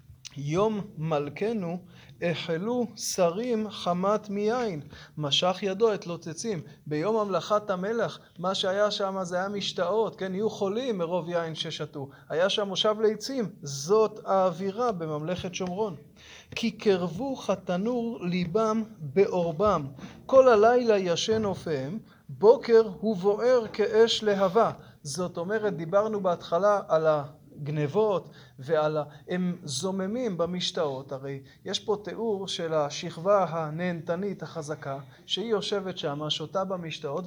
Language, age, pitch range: Hebrew, 30-49, 160-215 Hz